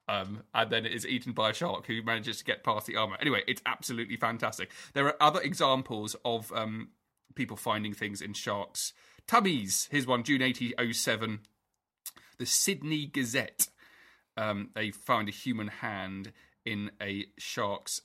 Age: 30-49